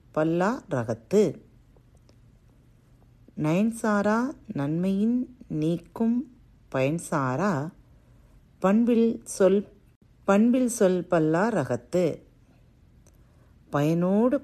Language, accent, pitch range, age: Tamil, native, 135-210 Hz, 40-59